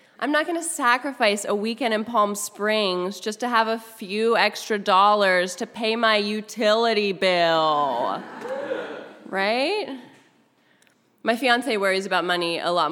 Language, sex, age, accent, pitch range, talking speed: English, female, 20-39, American, 205-280 Hz, 140 wpm